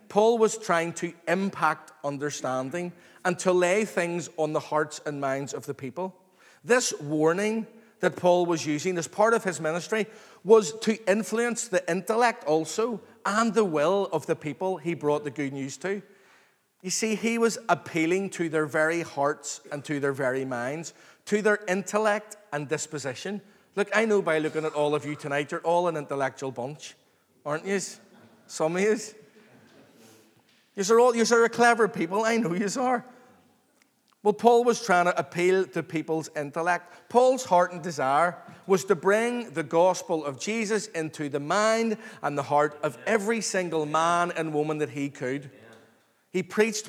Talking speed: 175 wpm